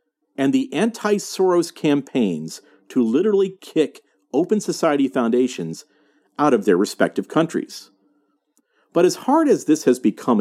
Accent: American